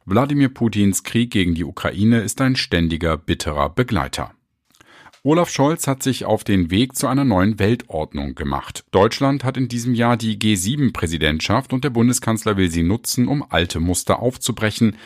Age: 50-69